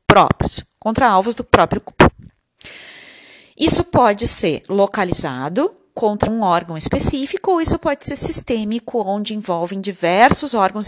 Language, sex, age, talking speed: Portuguese, female, 30-49, 125 wpm